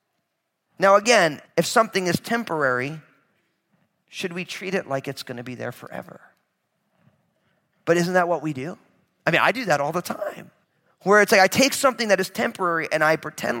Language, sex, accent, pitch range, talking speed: English, male, American, 145-195 Hz, 190 wpm